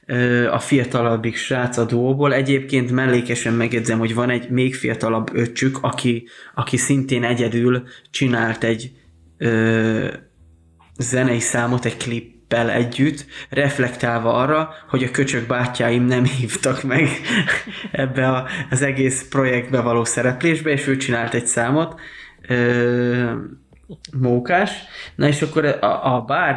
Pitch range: 120-140 Hz